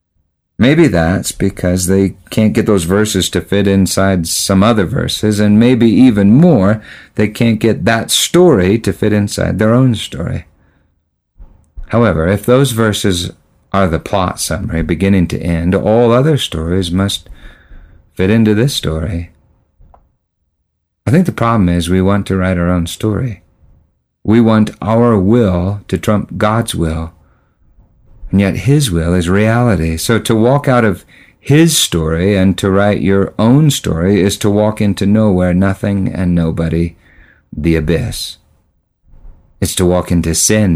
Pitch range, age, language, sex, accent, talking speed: 85-110 Hz, 50-69, English, male, American, 150 wpm